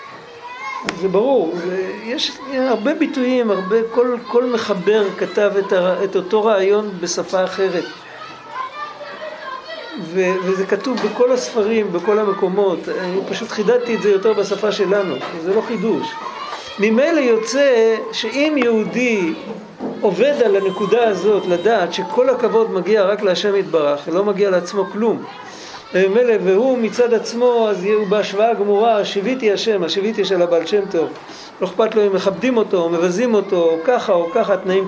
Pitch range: 195-240 Hz